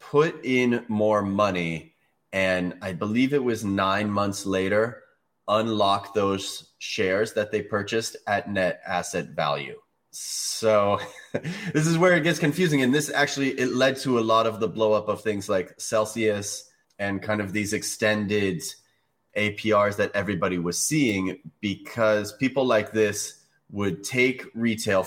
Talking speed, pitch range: 150 wpm, 95-120 Hz